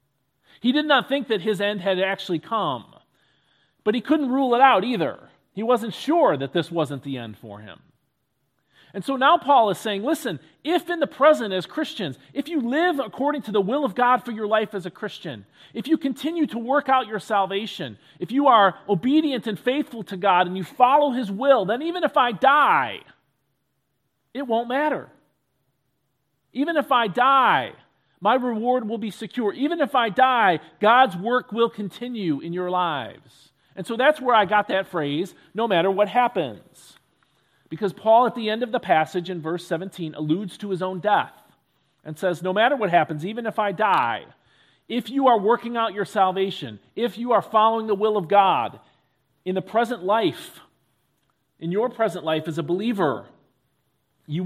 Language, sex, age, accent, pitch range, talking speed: English, male, 40-59, American, 175-250 Hz, 185 wpm